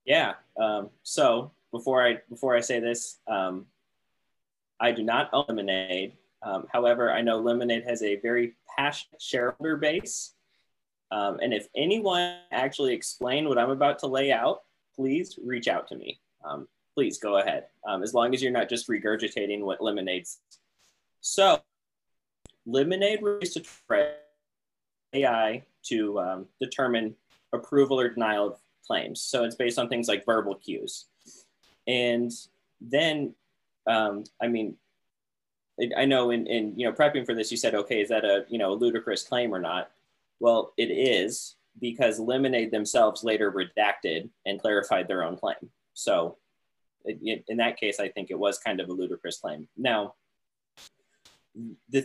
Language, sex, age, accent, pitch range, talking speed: English, male, 20-39, American, 110-140 Hz, 155 wpm